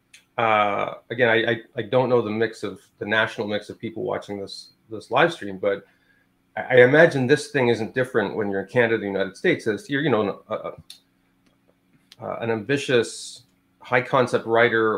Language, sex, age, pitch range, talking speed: English, male, 30-49, 105-130 Hz, 185 wpm